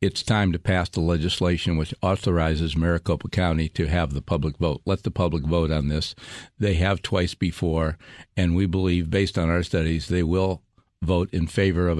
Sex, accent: male, American